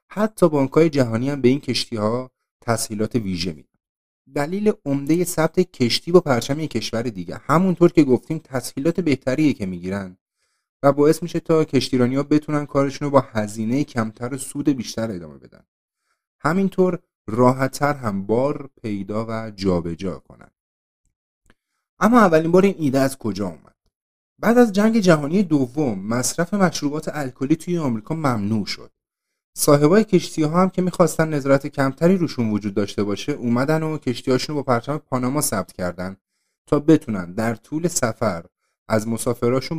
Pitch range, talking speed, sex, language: 110-155 Hz, 140 wpm, male, Persian